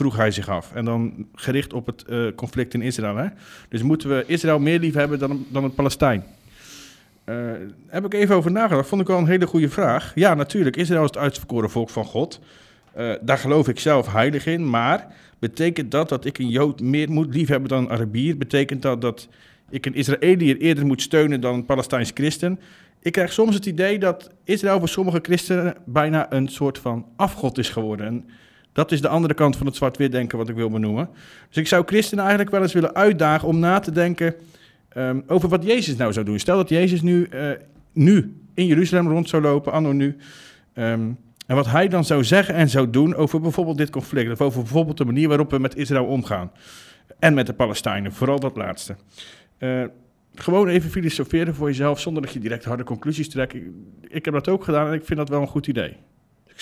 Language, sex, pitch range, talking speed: Dutch, male, 125-165 Hz, 215 wpm